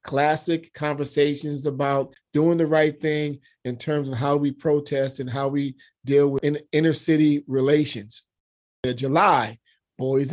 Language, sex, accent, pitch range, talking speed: English, male, American, 130-155 Hz, 135 wpm